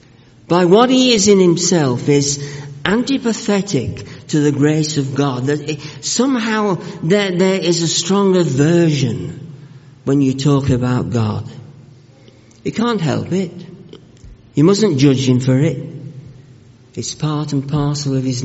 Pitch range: 125-165 Hz